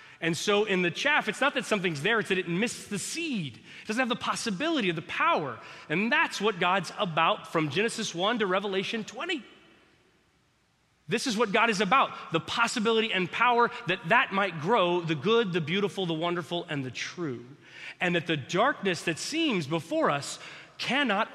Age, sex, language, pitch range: 30-49, male, English, 160-220 Hz